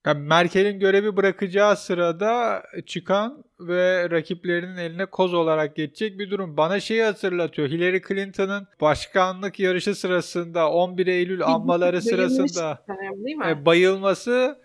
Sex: male